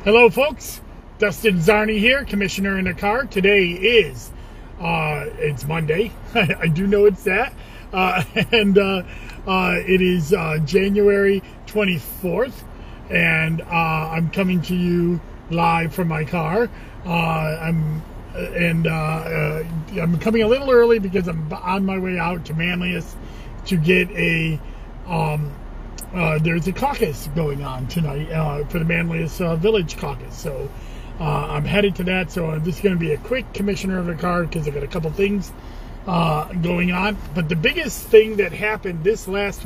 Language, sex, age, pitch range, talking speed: English, male, 40-59, 160-200 Hz, 165 wpm